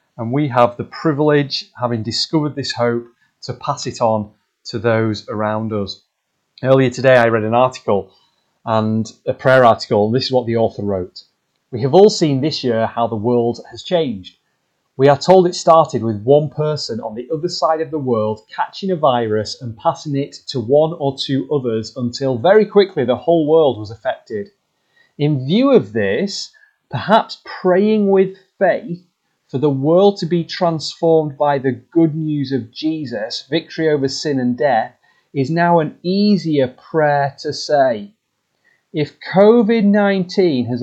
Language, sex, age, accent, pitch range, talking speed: English, male, 30-49, British, 125-170 Hz, 170 wpm